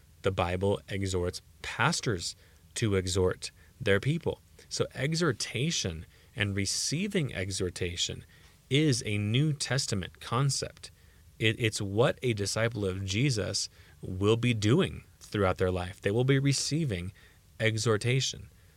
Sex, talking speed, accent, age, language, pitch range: male, 110 wpm, American, 30-49, English, 95-115 Hz